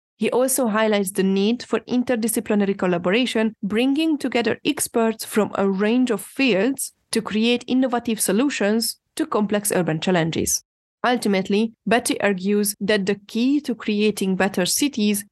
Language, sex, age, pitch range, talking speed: English, female, 20-39, 195-245 Hz, 135 wpm